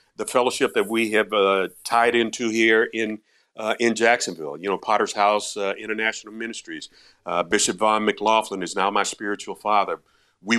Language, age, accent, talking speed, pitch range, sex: English, 50-69, American, 170 wpm, 105-130 Hz, male